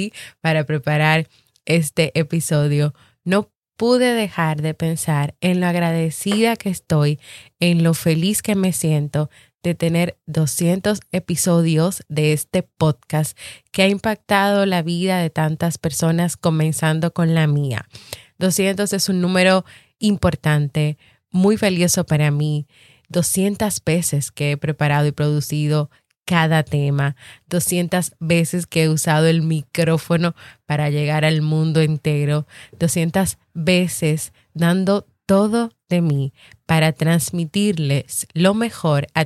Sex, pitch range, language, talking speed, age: female, 150-185 Hz, Spanish, 120 wpm, 20-39